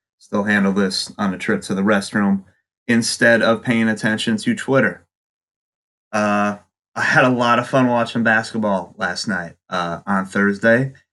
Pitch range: 100-135 Hz